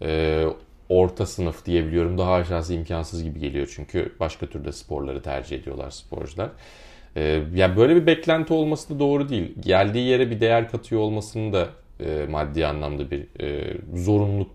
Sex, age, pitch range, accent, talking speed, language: male, 40-59, 85-125 Hz, native, 155 wpm, Turkish